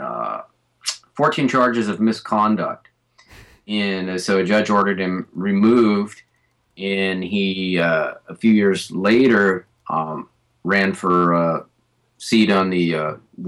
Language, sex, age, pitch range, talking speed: English, male, 30-49, 90-110 Hz, 130 wpm